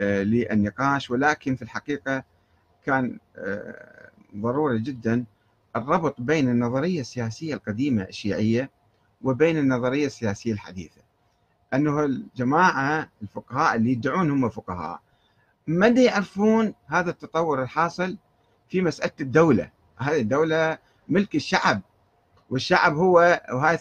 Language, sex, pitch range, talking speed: Arabic, male, 110-175 Hz, 100 wpm